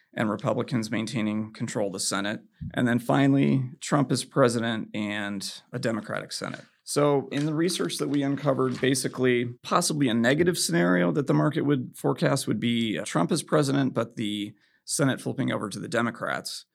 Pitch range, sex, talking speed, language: 105-135 Hz, male, 170 wpm, English